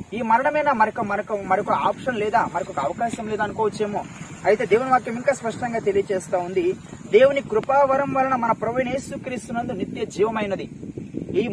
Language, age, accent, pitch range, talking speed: Telugu, 20-39, native, 180-235 Hz, 120 wpm